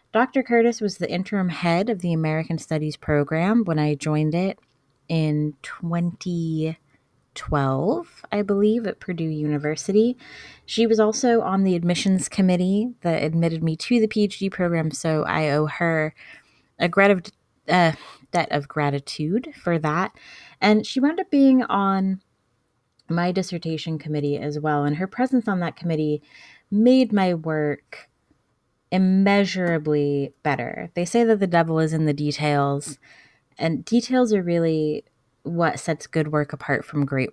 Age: 20-39